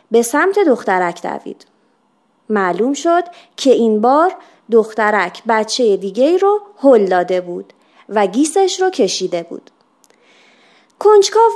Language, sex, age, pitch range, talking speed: Persian, female, 30-49, 210-320 Hz, 115 wpm